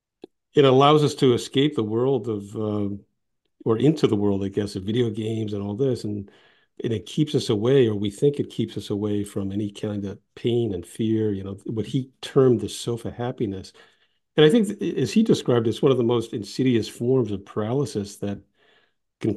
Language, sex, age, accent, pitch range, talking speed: English, male, 50-69, American, 105-140 Hz, 205 wpm